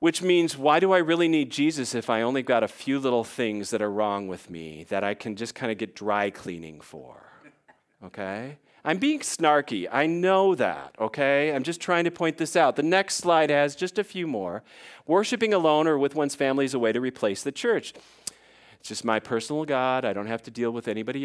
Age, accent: 40-59, American